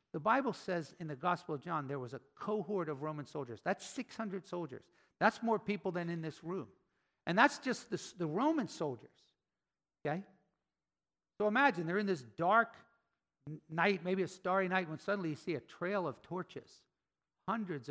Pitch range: 150-195 Hz